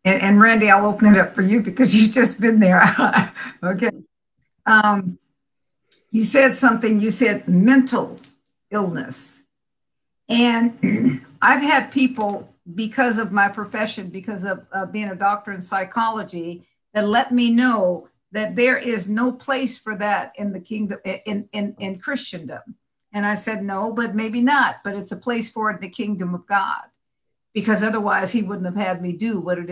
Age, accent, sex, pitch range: 50-69, American, female, 200-240 Hz